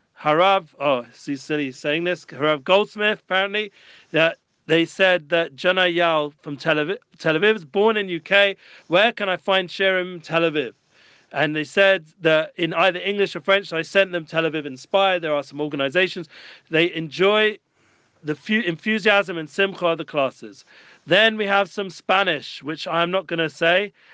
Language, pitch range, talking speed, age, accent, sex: English, 160-190 Hz, 170 wpm, 40-59, British, male